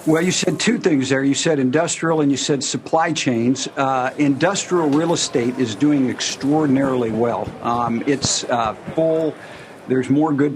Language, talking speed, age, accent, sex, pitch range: English, 165 wpm, 60-79, American, male, 120-145 Hz